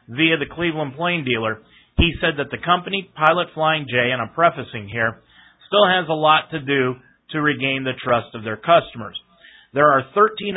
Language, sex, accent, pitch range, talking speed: English, male, American, 125-170 Hz, 185 wpm